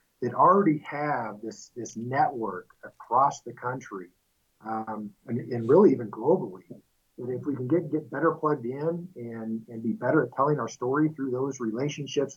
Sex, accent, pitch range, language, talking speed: male, American, 120-145 Hz, English, 170 wpm